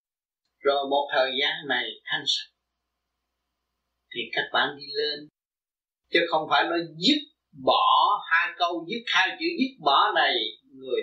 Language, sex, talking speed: Vietnamese, male, 145 wpm